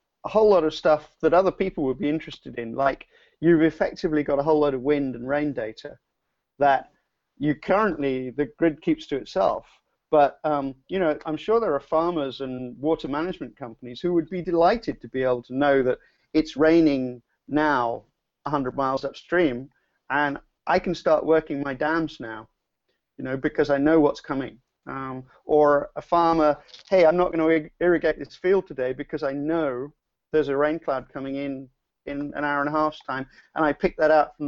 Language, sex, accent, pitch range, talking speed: English, male, British, 135-160 Hz, 195 wpm